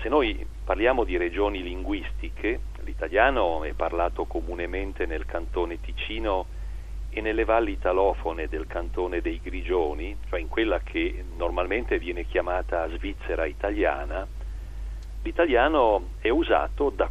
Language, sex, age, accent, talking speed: Italian, male, 40-59, native, 120 wpm